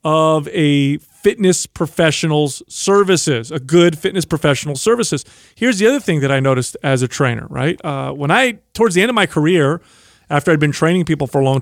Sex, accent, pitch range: male, American, 150-205 Hz